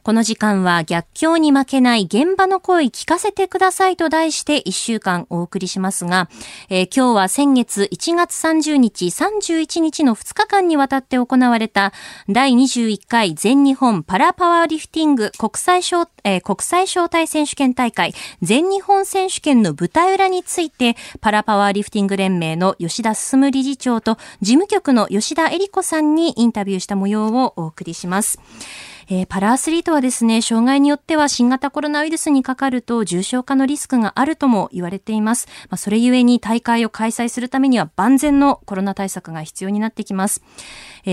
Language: Japanese